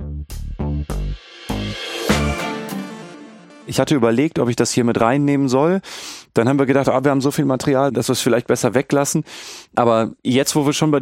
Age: 30-49